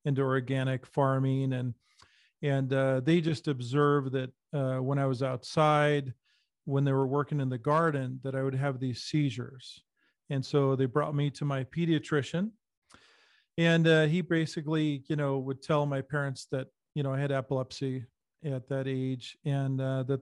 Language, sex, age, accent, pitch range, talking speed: English, male, 40-59, American, 135-150 Hz, 170 wpm